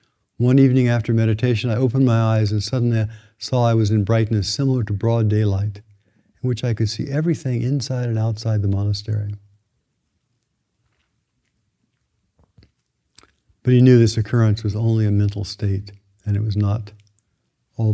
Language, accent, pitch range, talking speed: English, American, 105-125 Hz, 155 wpm